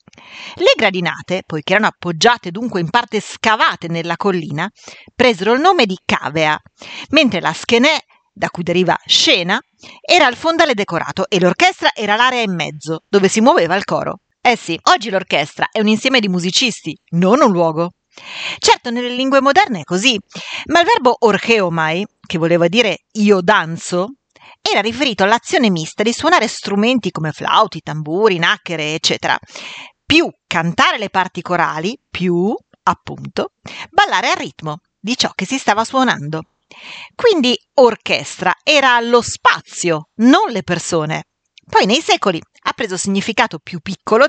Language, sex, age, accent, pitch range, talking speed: Italian, female, 40-59, native, 175-250 Hz, 150 wpm